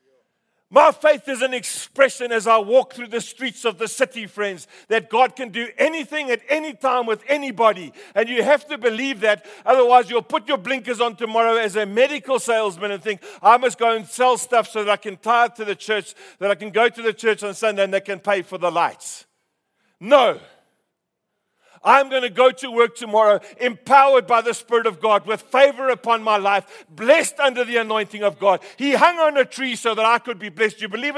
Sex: male